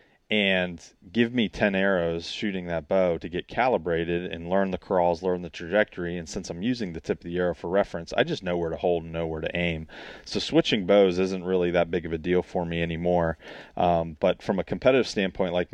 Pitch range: 85-95 Hz